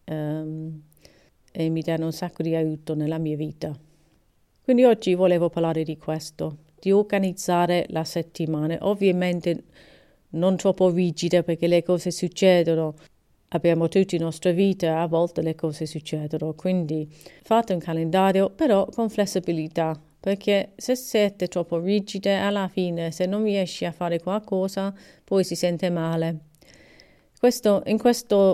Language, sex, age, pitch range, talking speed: Italian, female, 40-59, 165-200 Hz, 135 wpm